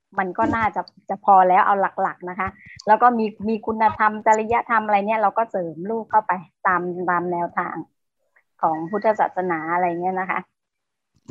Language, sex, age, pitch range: Thai, male, 30-49, 195-245 Hz